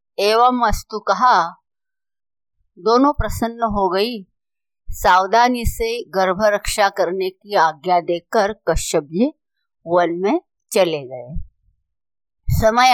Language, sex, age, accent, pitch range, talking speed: Hindi, female, 50-69, native, 185-255 Hz, 100 wpm